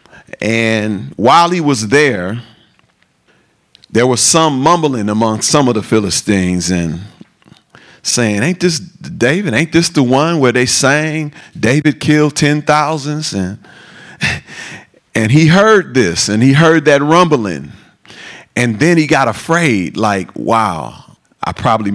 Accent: American